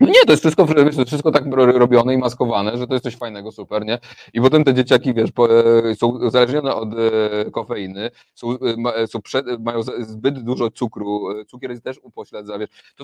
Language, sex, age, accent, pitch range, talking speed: Polish, male, 30-49, native, 110-130 Hz, 170 wpm